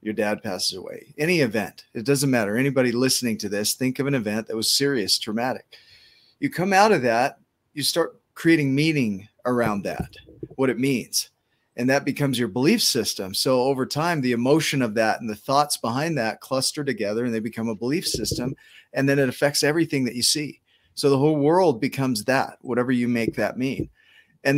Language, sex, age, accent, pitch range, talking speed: English, male, 40-59, American, 120-145 Hz, 200 wpm